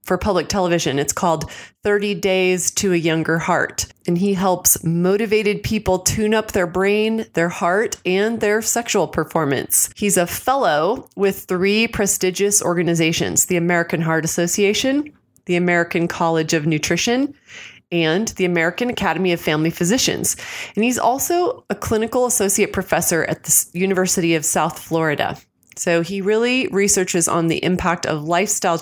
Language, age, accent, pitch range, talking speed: English, 30-49, American, 170-210 Hz, 150 wpm